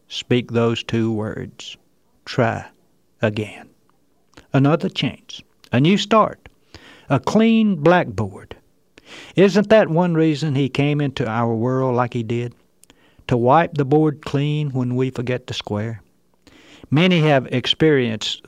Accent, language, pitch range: American, English, 115-160 Hz